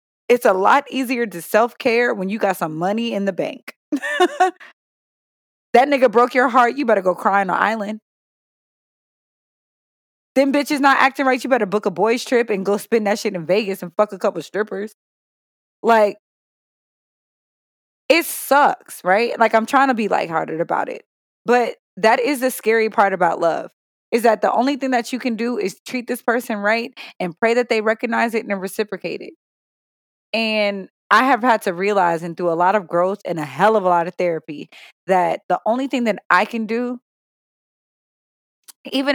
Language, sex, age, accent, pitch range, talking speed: English, female, 20-39, American, 190-240 Hz, 185 wpm